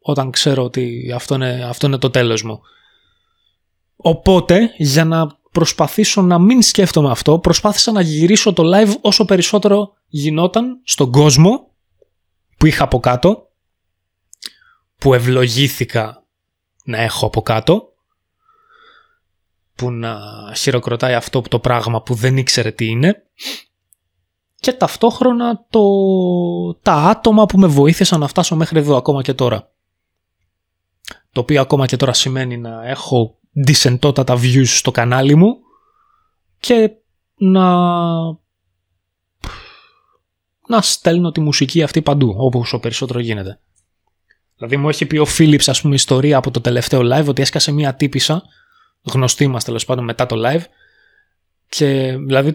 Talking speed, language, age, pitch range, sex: 130 wpm, Greek, 20-39, 120-180 Hz, male